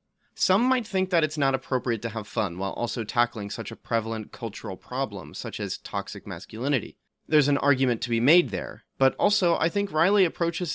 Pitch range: 115-165 Hz